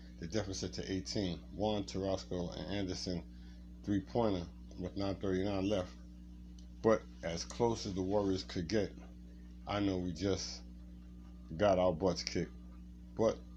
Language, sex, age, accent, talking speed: English, male, 50-69, American, 130 wpm